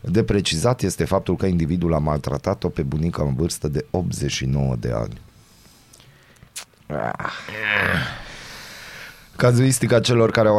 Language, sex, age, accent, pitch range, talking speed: Romanian, male, 30-49, native, 85-110 Hz, 115 wpm